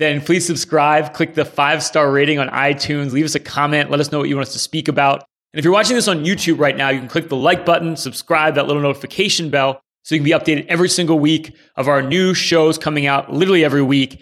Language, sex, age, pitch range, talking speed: English, male, 30-49, 130-165 Hz, 255 wpm